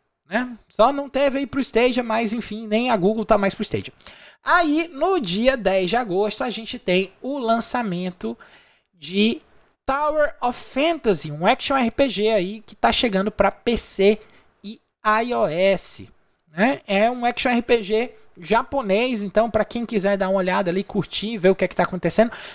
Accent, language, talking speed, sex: Brazilian, Portuguese, 170 wpm, male